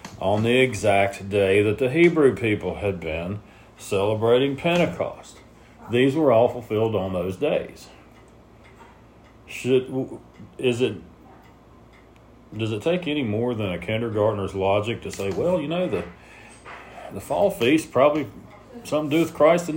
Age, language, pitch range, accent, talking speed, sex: 40-59, English, 95-125 Hz, American, 145 wpm, male